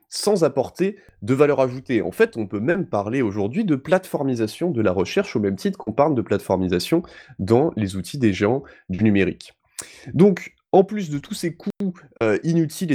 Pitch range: 100-135 Hz